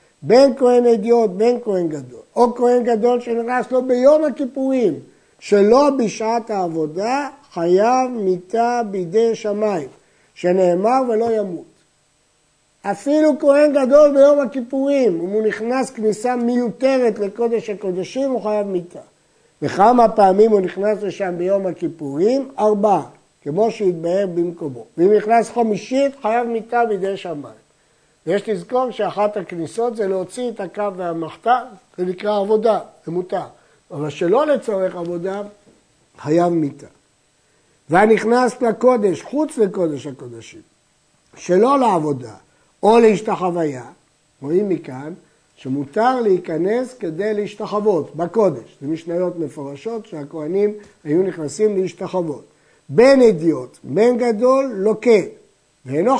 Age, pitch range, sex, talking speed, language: 50-69, 170-235 Hz, male, 110 wpm, Hebrew